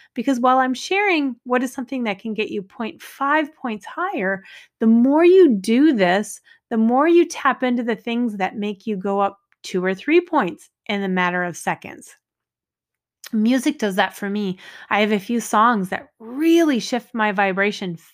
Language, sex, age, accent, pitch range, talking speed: English, female, 30-49, American, 195-270 Hz, 180 wpm